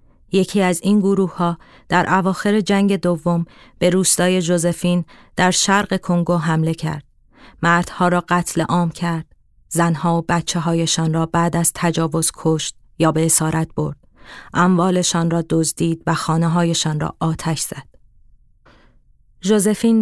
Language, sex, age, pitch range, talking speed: Persian, female, 30-49, 160-180 Hz, 135 wpm